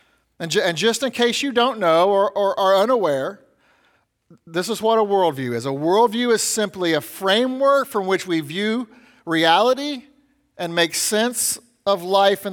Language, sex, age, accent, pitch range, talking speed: English, male, 40-59, American, 165-235 Hz, 170 wpm